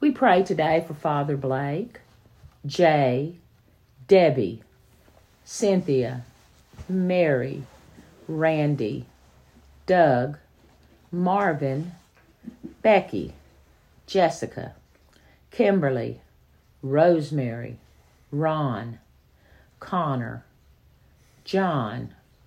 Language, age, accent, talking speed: English, 50-69, American, 55 wpm